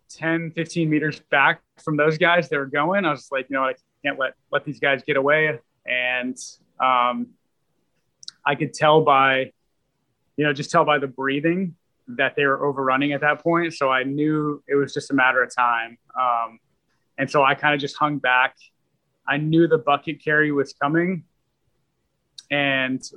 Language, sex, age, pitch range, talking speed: English, male, 20-39, 130-150 Hz, 180 wpm